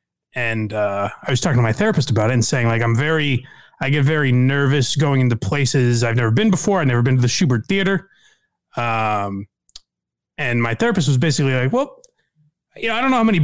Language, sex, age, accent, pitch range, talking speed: English, male, 30-49, American, 120-165 Hz, 215 wpm